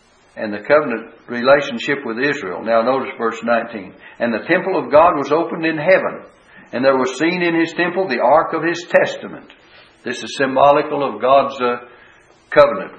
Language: English